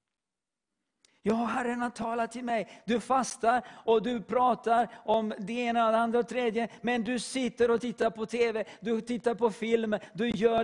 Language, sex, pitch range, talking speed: English, male, 175-230 Hz, 175 wpm